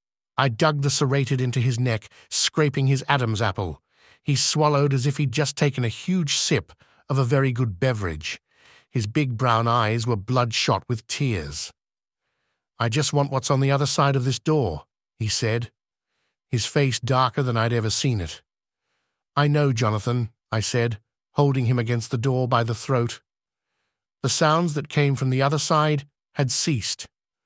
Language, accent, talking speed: English, British, 170 wpm